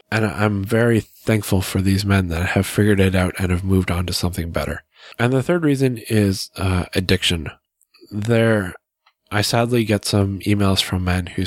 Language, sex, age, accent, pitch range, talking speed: English, male, 20-39, American, 90-105 Hz, 185 wpm